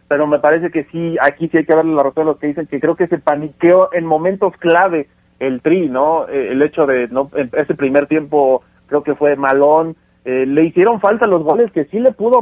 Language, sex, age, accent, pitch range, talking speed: Spanish, male, 40-59, Mexican, 145-185 Hz, 215 wpm